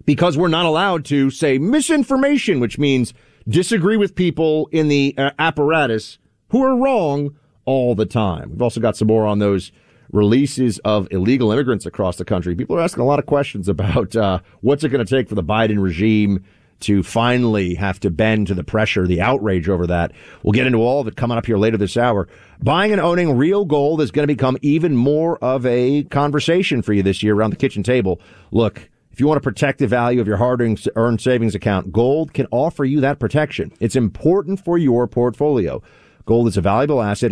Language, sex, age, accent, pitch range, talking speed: English, male, 40-59, American, 105-145 Hz, 205 wpm